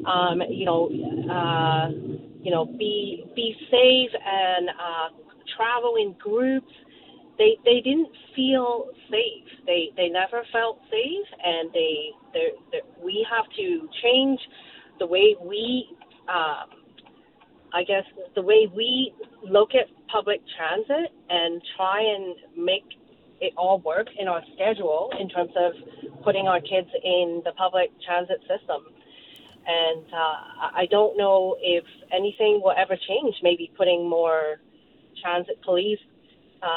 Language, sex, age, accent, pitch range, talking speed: English, female, 40-59, American, 175-260 Hz, 130 wpm